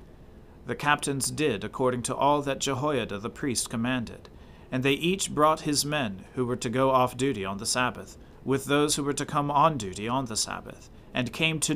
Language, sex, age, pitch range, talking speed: English, male, 40-59, 120-150 Hz, 205 wpm